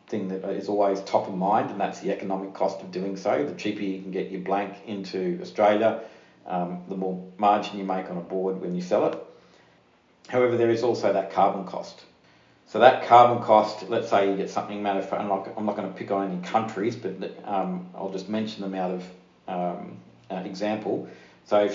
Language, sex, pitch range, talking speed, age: English, male, 95-110 Hz, 205 wpm, 50-69